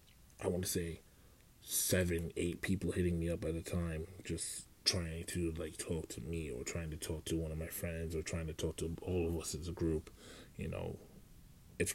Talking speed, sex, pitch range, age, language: 215 wpm, male, 80-90 Hz, 20-39, English